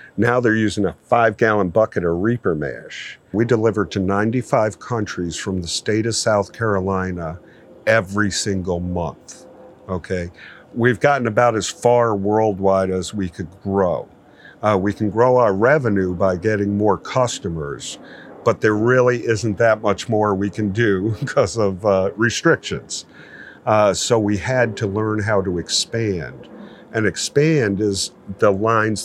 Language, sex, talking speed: English, male, 150 wpm